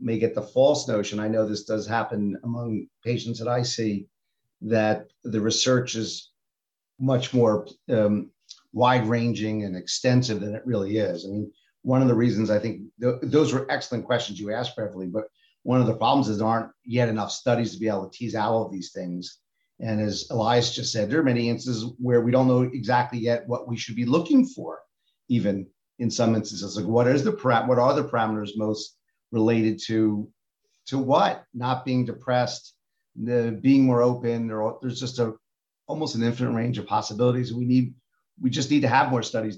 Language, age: English, 50-69